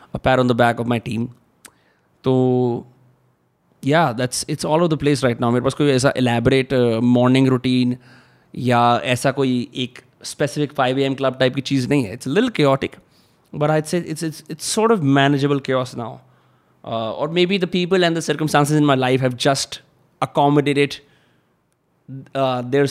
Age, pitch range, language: 20-39, 125-145 Hz, Hindi